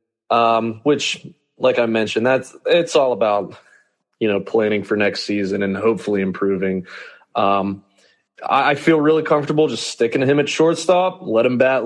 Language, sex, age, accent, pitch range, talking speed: English, male, 20-39, American, 115-155 Hz, 165 wpm